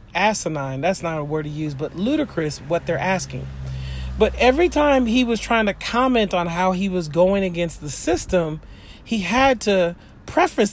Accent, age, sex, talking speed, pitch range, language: American, 40-59, male, 180 wpm, 155-240 Hz, English